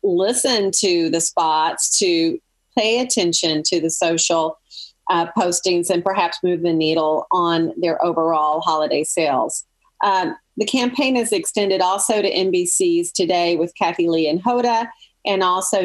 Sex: female